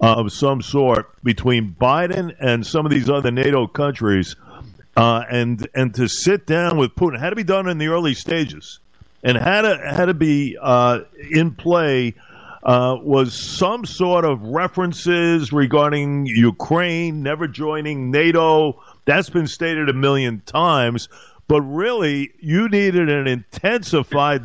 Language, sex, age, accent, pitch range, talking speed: English, male, 50-69, American, 125-165 Hz, 155 wpm